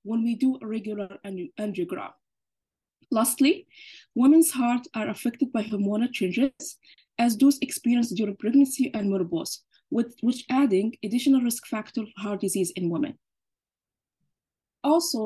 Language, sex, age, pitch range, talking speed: English, female, 20-39, 210-265 Hz, 125 wpm